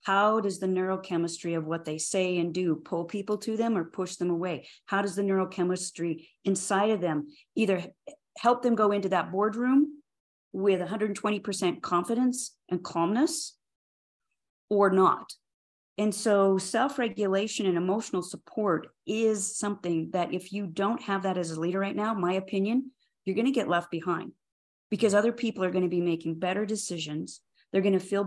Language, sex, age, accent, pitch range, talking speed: English, female, 40-59, American, 175-210 Hz, 165 wpm